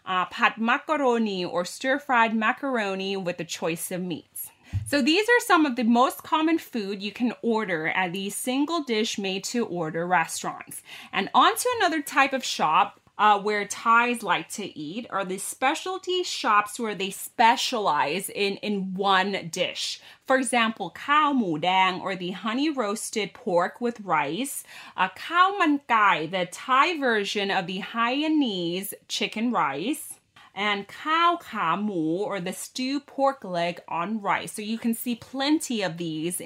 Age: 30-49